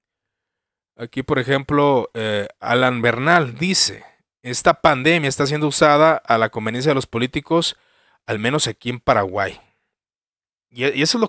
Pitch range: 110-145 Hz